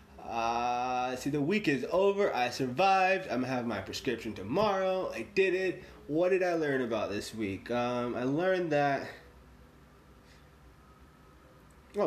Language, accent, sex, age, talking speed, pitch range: English, American, male, 20-39, 140 wpm, 120-145 Hz